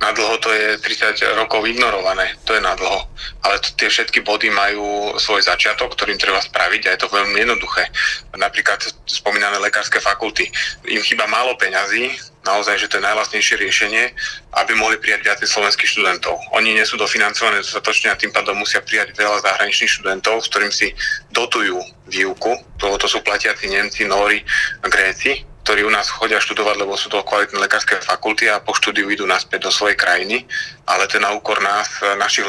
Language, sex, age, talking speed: Slovak, male, 30-49, 175 wpm